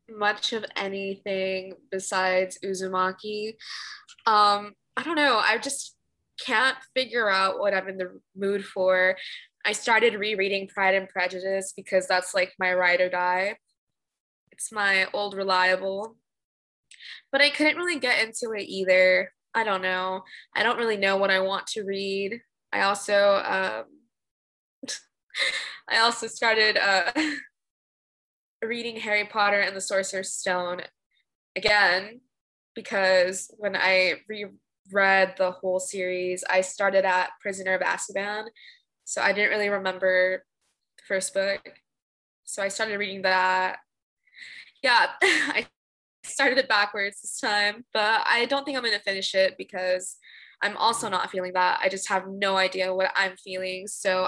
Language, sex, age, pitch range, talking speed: English, female, 20-39, 190-220 Hz, 140 wpm